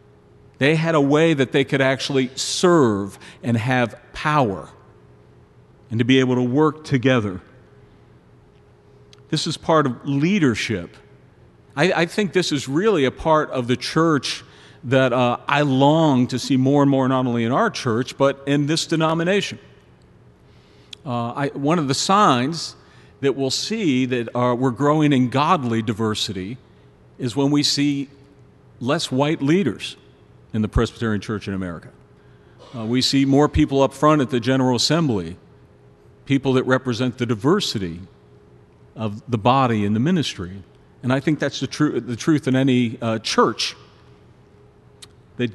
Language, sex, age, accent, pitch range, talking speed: English, male, 50-69, American, 115-145 Hz, 150 wpm